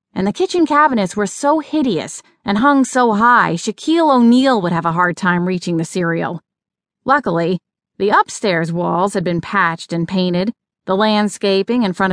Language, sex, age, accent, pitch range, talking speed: English, female, 30-49, American, 180-240 Hz, 170 wpm